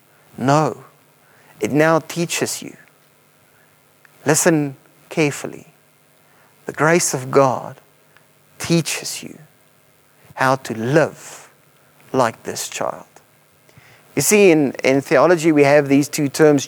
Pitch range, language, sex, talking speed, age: 150-225 Hz, English, male, 105 wpm, 30-49